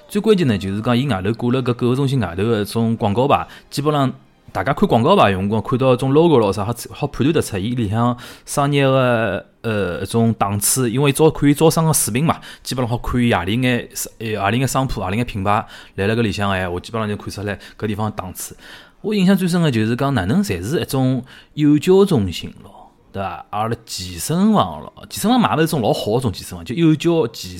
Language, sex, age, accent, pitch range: Chinese, male, 20-39, native, 105-140 Hz